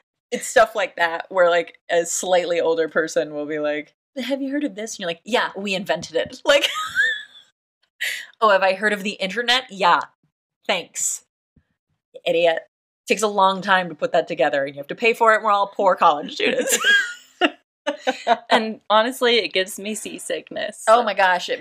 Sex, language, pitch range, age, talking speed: female, English, 175-275 Hz, 30-49, 190 wpm